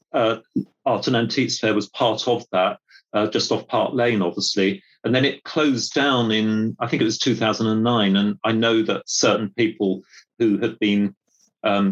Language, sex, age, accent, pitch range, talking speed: English, male, 40-59, British, 100-115 Hz, 180 wpm